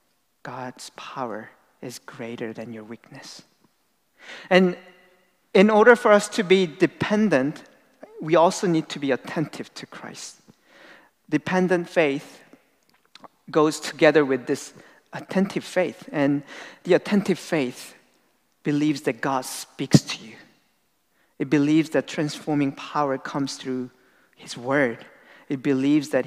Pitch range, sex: 140-185 Hz, male